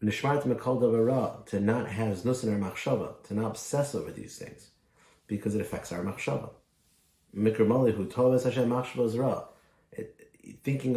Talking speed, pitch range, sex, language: 80 wpm, 100-125 Hz, male, English